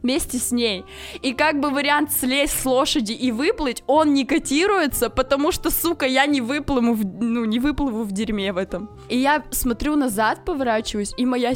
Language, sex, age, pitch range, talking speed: Russian, female, 20-39, 200-250 Hz, 185 wpm